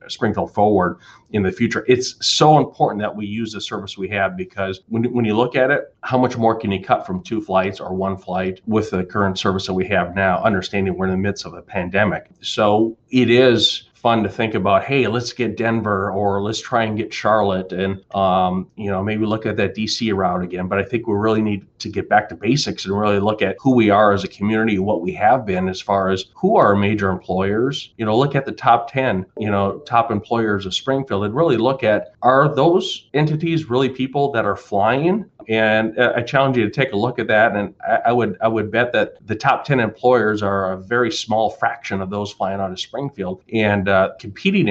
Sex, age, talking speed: male, 40-59, 235 wpm